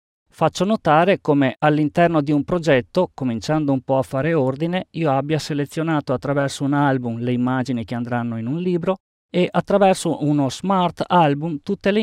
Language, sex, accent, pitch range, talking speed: Italian, male, native, 130-180 Hz, 165 wpm